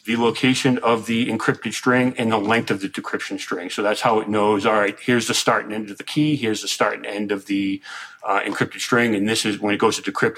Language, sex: English, male